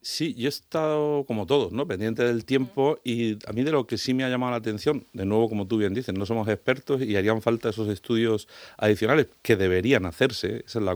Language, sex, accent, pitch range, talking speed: Spanish, male, Spanish, 100-125 Hz, 235 wpm